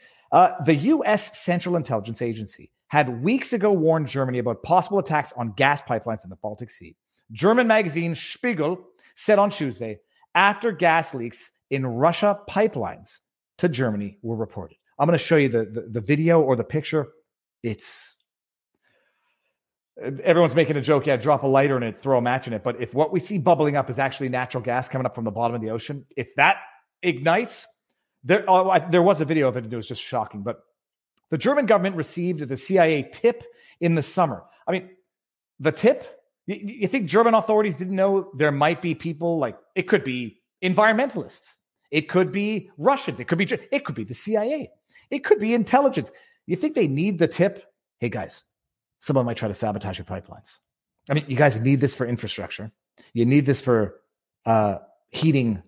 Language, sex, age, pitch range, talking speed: English, male, 40-59, 120-195 Hz, 190 wpm